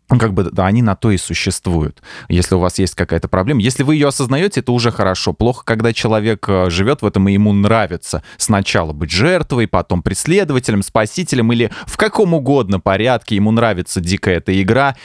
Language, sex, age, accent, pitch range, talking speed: Russian, male, 20-39, native, 90-120 Hz, 180 wpm